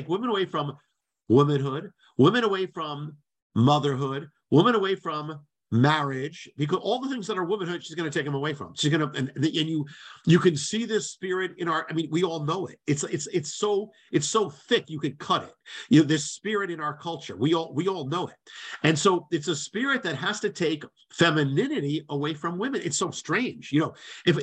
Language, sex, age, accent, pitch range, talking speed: English, male, 50-69, American, 145-185 Hz, 215 wpm